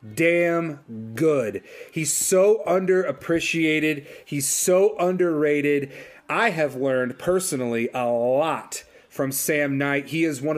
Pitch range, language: 145-190 Hz, English